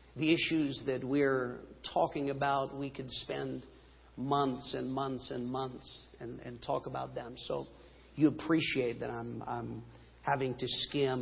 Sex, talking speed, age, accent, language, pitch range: male, 150 wpm, 50-69, American, English, 140-210 Hz